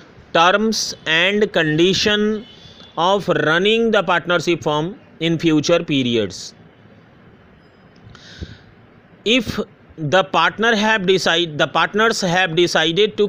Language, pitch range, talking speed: Hindi, 150-195 Hz, 95 wpm